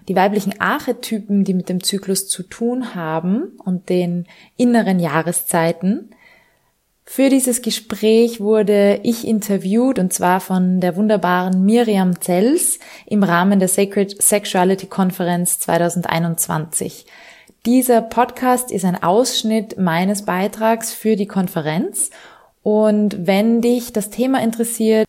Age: 20-39